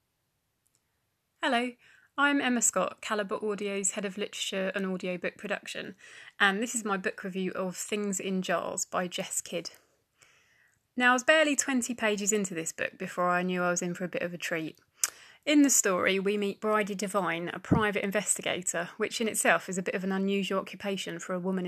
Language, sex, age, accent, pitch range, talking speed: English, female, 30-49, British, 185-210 Hz, 190 wpm